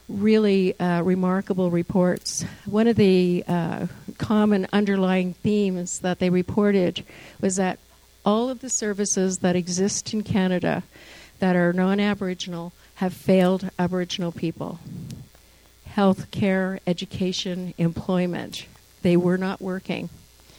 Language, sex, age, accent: English, female, 50-69, American